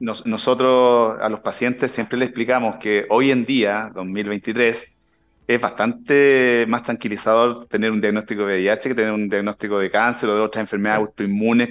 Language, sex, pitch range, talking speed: Spanish, male, 110-125 Hz, 165 wpm